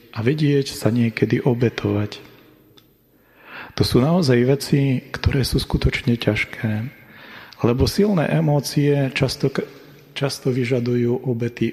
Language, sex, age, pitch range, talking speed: Slovak, male, 30-49, 110-125 Hz, 100 wpm